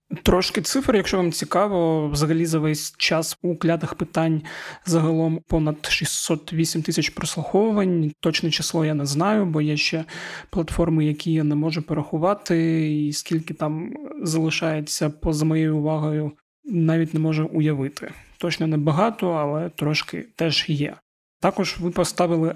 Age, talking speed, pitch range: 20-39, 140 wpm, 155-175 Hz